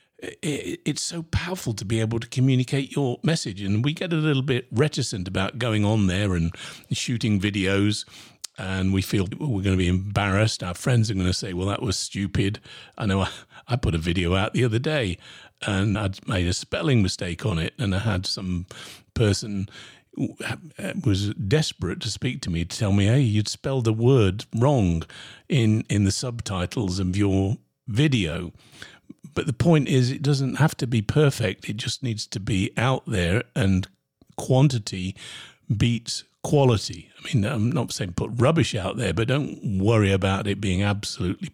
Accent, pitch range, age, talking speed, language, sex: British, 95-130 Hz, 50-69, 180 wpm, English, male